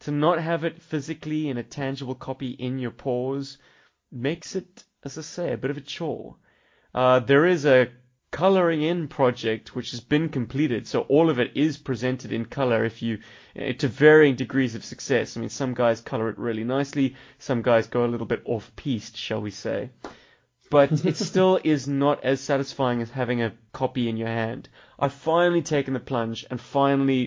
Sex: male